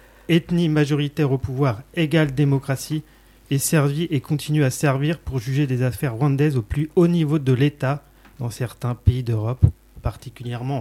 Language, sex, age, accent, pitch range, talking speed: French, male, 30-49, French, 120-150 Hz, 155 wpm